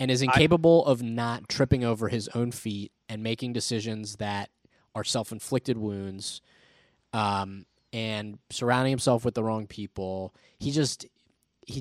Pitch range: 105-130 Hz